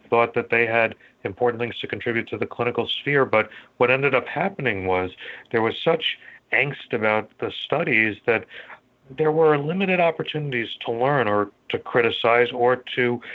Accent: American